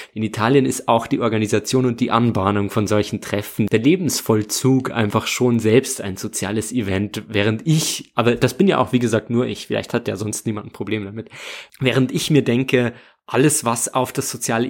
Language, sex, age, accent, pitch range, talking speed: German, male, 20-39, German, 105-130 Hz, 195 wpm